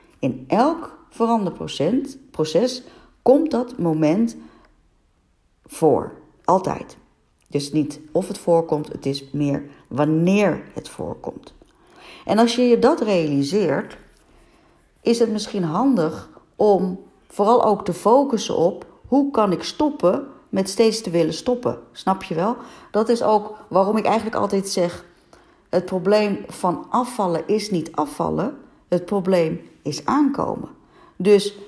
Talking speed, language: 125 wpm, Dutch